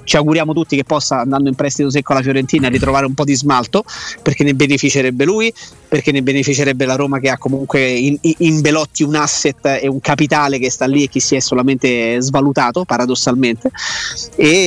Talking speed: 190 wpm